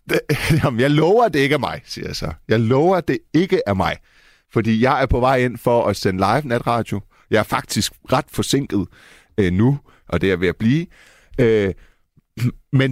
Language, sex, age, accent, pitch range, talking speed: Danish, male, 30-49, native, 100-140 Hz, 205 wpm